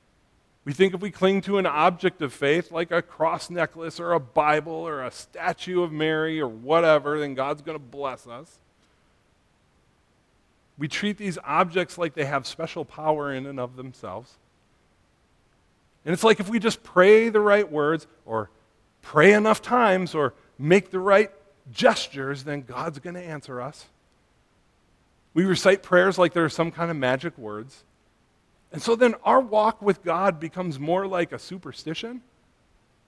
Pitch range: 135-200 Hz